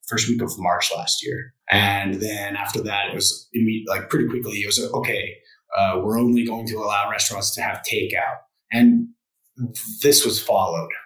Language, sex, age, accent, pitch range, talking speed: English, male, 20-39, American, 100-125 Hz, 180 wpm